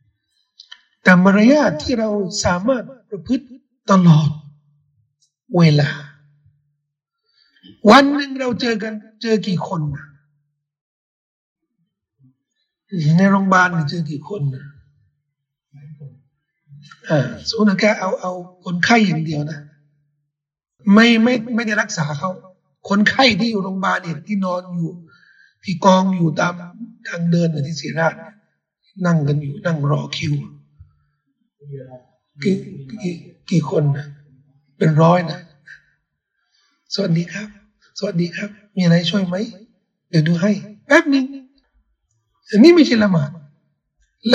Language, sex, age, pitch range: Thai, male, 60-79, 150-215 Hz